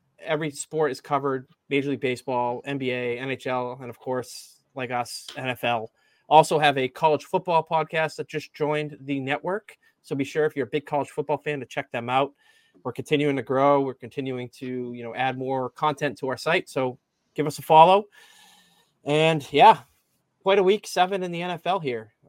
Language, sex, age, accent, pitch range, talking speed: English, male, 30-49, American, 125-150 Hz, 190 wpm